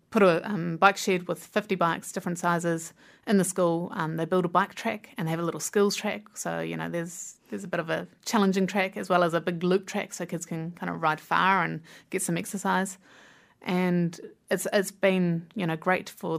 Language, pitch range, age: English, 170-195 Hz, 30-49